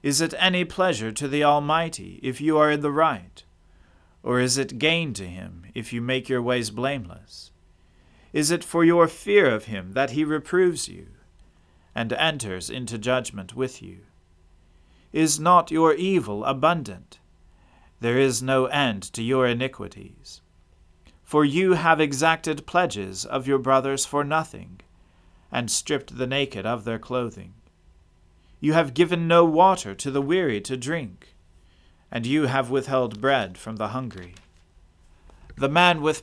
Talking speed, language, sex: 150 wpm, English, male